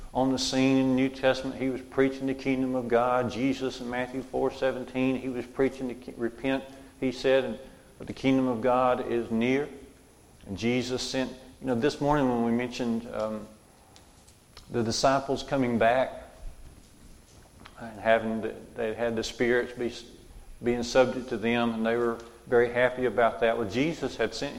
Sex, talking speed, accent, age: male, 180 wpm, American, 50-69